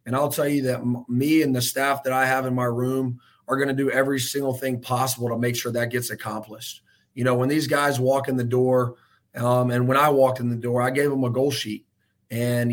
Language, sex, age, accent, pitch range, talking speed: English, male, 30-49, American, 120-135 Hz, 250 wpm